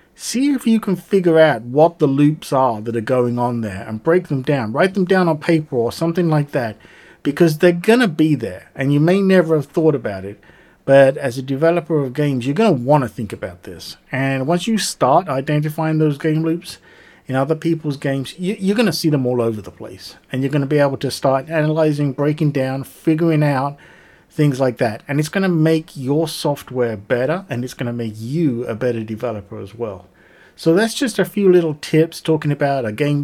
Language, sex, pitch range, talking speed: English, male, 130-165 Hz, 220 wpm